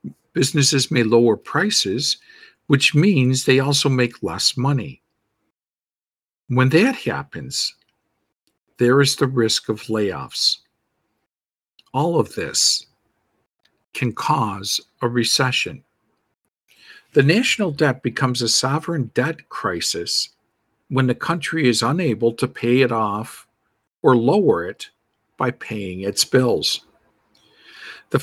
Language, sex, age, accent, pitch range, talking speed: English, male, 50-69, American, 115-145 Hz, 110 wpm